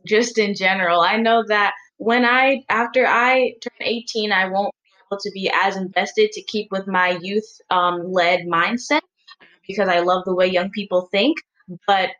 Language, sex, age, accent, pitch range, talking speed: English, female, 10-29, American, 180-220 Hz, 175 wpm